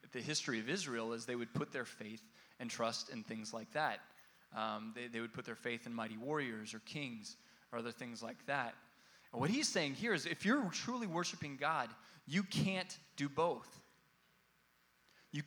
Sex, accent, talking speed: male, American, 190 wpm